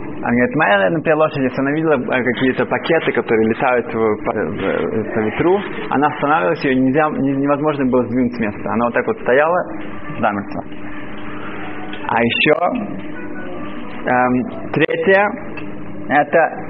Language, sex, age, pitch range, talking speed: Russian, male, 20-39, 120-155 Hz, 120 wpm